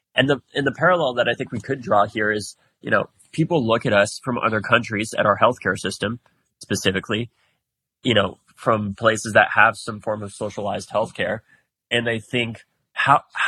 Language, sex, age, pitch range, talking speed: English, male, 20-39, 105-125 Hz, 185 wpm